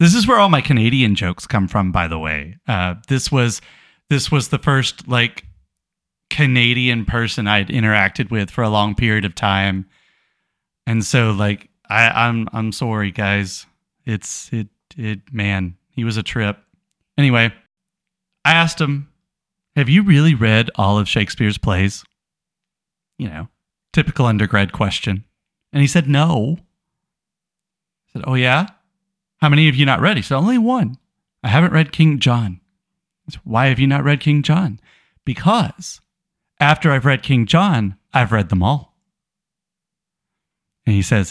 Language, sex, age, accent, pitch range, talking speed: English, male, 30-49, American, 110-160 Hz, 160 wpm